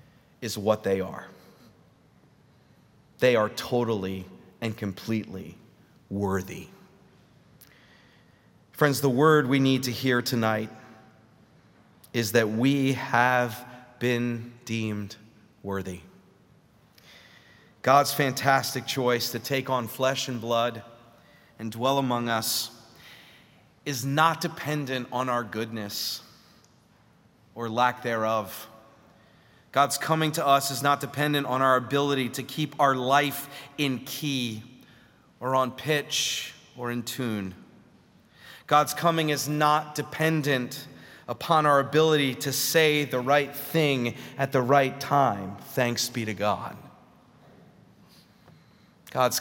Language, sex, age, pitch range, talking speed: English, male, 30-49, 115-145 Hz, 110 wpm